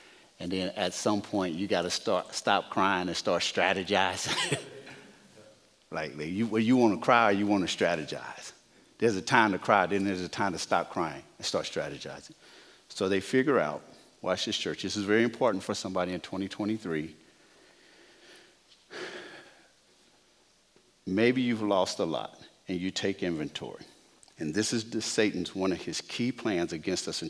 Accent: American